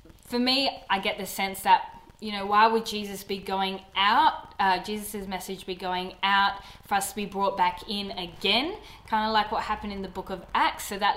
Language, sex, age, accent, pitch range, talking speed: English, female, 20-39, Australian, 170-220 Hz, 220 wpm